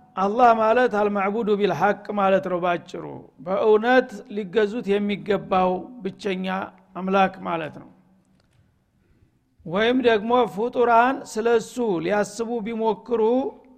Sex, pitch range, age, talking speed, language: male, 205-240 Hz, 60-79, 85 wpm, Amharic